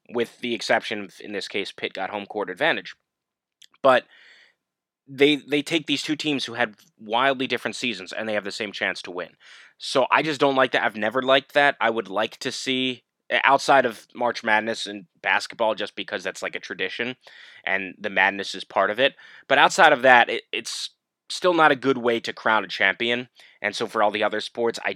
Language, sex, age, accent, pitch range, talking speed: English, male, 20-39, American, 110-140 Hz, 210 wpm